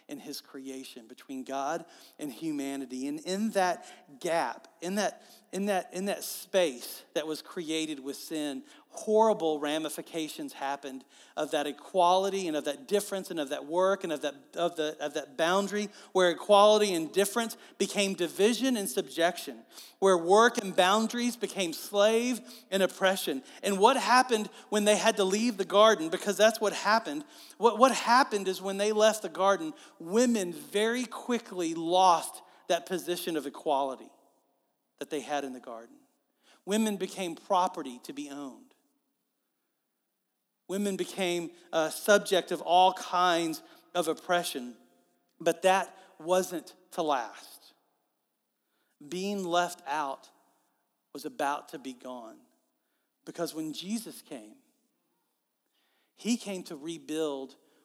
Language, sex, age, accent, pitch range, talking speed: English, male, 40-59, American, 160-220 Hz, 140 wpm